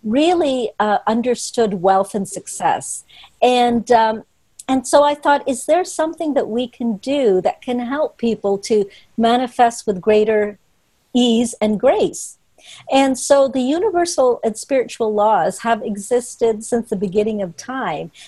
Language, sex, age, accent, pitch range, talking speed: English, female, 50-69, American, 210-265 Hz, 145 wpm